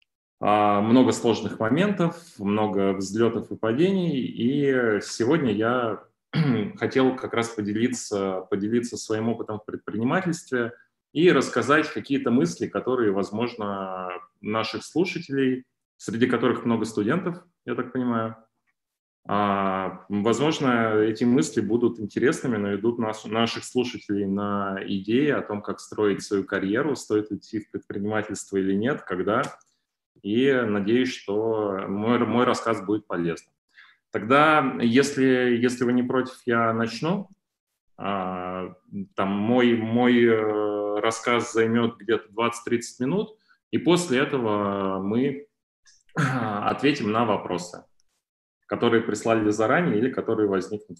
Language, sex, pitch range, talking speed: Russian, male, 105-125 Hz, 110 wpm